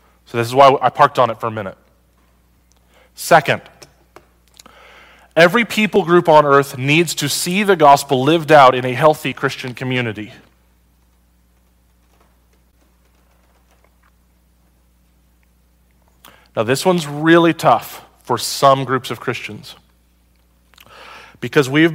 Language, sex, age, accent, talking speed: English, male, 30-49, American, 110 wpm